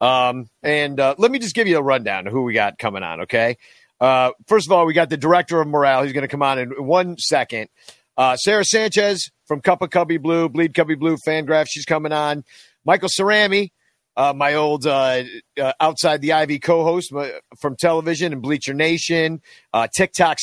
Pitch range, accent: 140-190 Hz, American